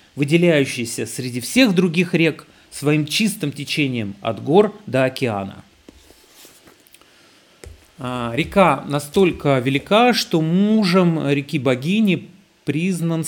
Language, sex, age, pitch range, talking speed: Russian, male, 40-59, 120-160 Hz, 85 wpm